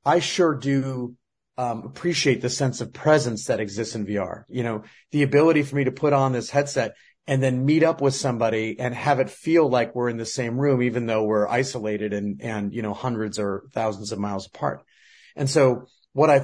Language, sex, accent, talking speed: English, male, American, 210 wpm